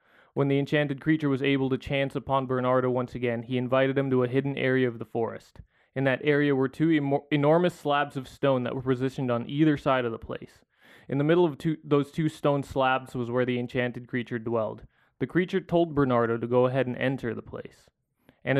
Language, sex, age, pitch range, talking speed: English, male, 20-39, 130-155 Hz, 220 wpm